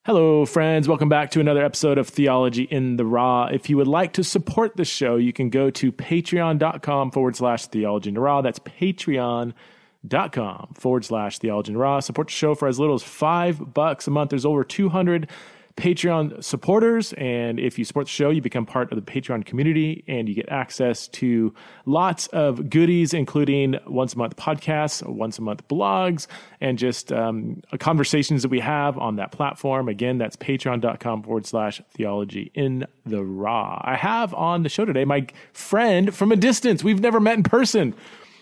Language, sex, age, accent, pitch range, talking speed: English, male, 30-49, American, 130-175 Hz, 185 wpm